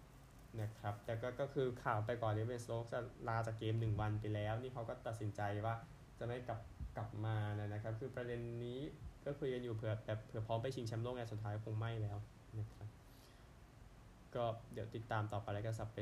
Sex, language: male, Thai